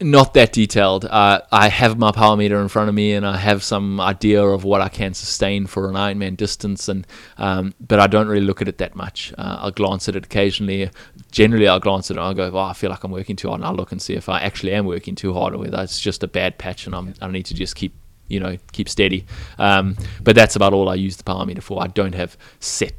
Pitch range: 95-100 Hz